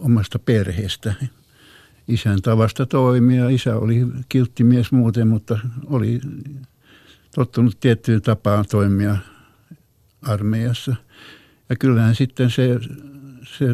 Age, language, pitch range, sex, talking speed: 60-79, Finnish, 110-130 Hz, male, 90 wpm